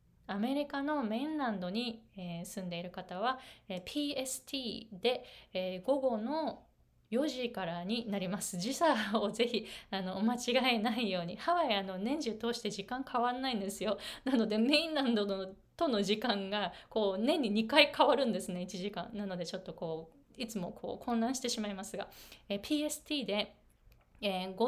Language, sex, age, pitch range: Japanese, female, 20-39, 190-250 Hz